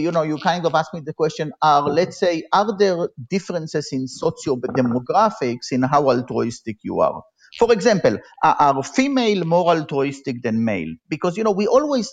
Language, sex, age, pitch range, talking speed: English, male, 50-69, 135-200 Hz, 180 wpm